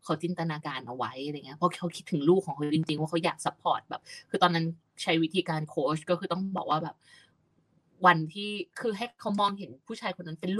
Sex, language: female, Thai